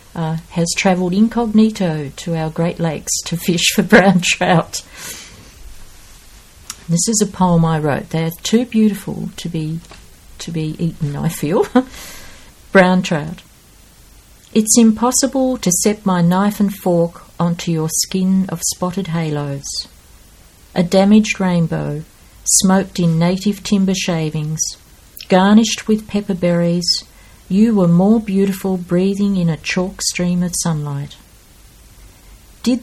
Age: 50-69